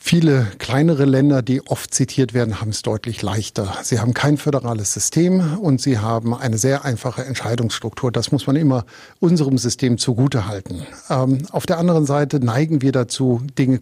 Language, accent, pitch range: German, German, 125-155 Hz